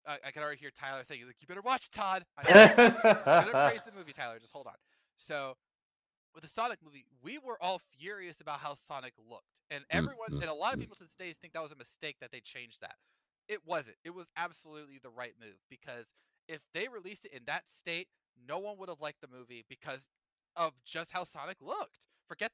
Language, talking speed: English, 220 wpm